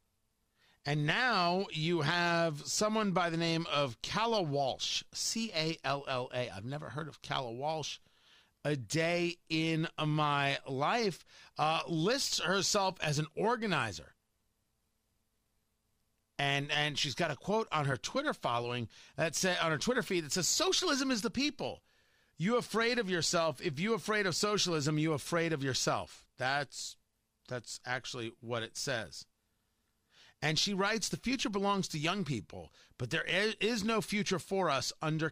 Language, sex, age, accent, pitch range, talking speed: English, male, 40-59, American, 125-180 Hz, 150 wpm